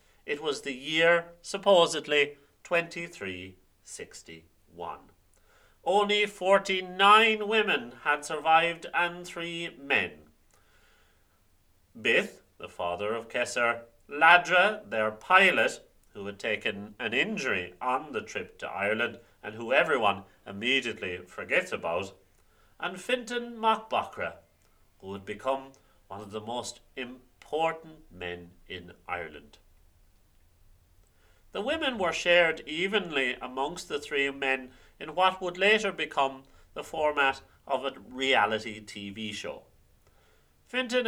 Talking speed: 110 wpm